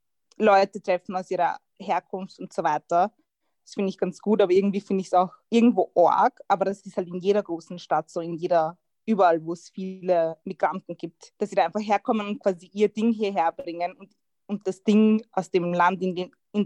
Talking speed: 210 wpm